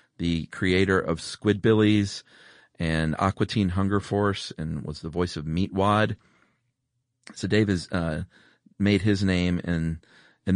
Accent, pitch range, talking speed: American, 85-105 Hz, 130 wpm